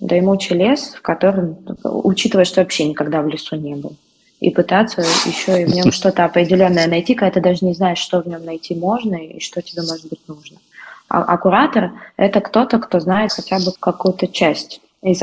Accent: native